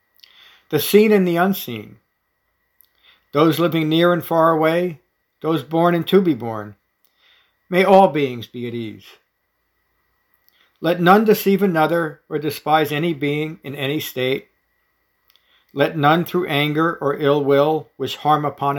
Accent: American